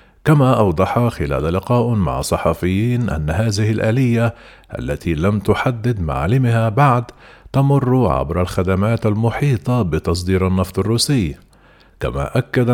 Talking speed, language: 110 wpm, Arabic